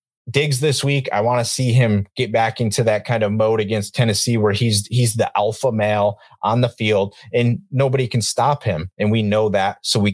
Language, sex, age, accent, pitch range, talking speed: English, male, 30-49, American, 105-130 Hz, 220 wpm